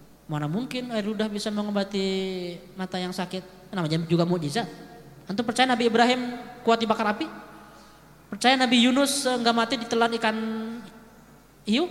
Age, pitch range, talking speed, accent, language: 20-39, 175-240 Hz, 135 wpm, native, Indonesian